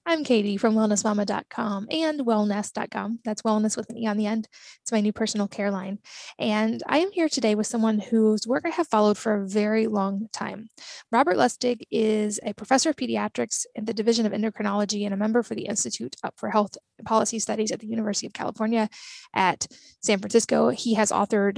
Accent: American